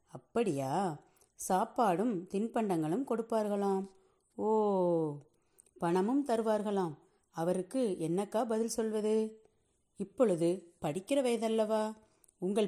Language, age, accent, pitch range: Tamil, 30-49, native, 165-205 Hz